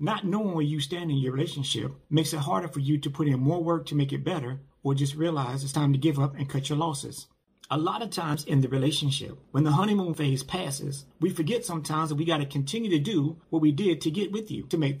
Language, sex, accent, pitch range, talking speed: English, male, American, 140-175 Hz, 260 wpm